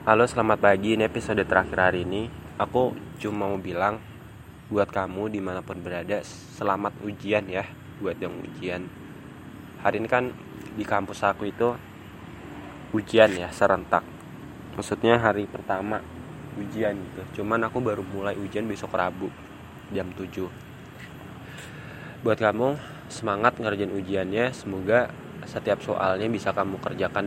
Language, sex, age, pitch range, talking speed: Indonesian, male, 20-39, 100-120 Hz, 125 wpm